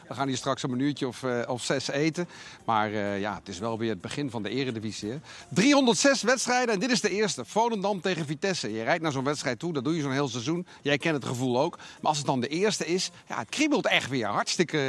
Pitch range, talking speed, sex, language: 135-195 Hz, 260 wpm, male, Dutch